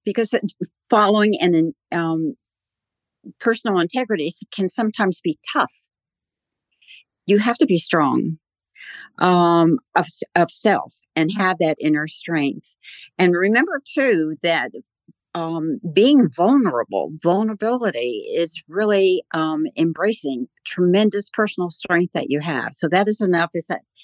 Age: 50-69